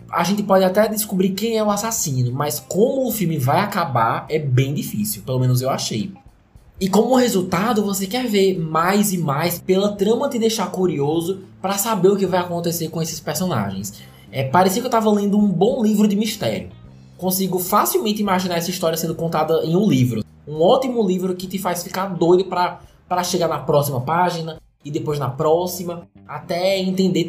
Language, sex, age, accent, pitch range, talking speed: Portuguese, male, 20-39, Brazilian, 150-195 Hz, 185 wpm